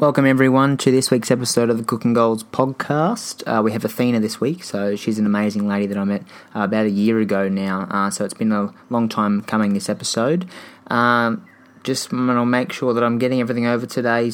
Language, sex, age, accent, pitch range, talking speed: English, male, 20-39, Australian, 105-125 Hz, 220 wpm